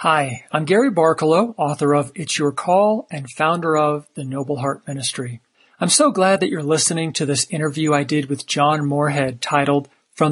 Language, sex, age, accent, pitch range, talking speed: English, male, 50-69, American, 145-180 Hz, 185 wpm